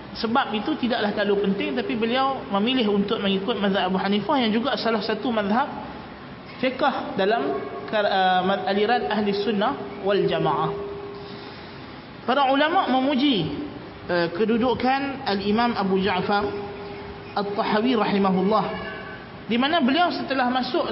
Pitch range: 205-260 Hz